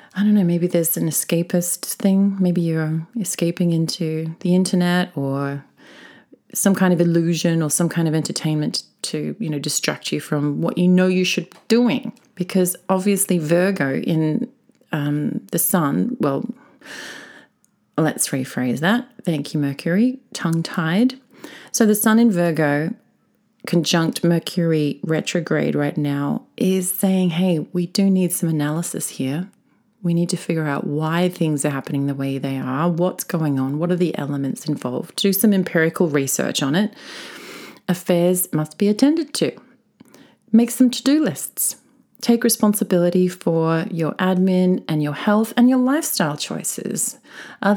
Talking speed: 150 wpm